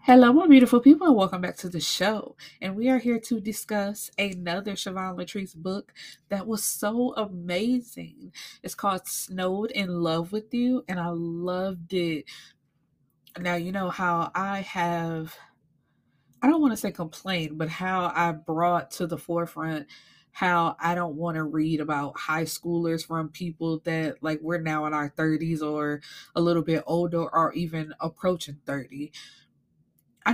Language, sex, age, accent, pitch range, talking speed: English, female, 20-39, American, 160-195 Hz, 160 wpm